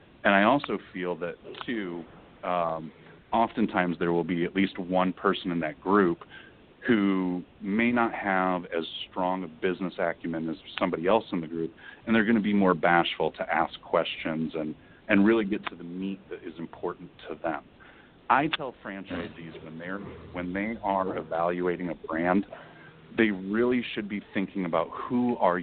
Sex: male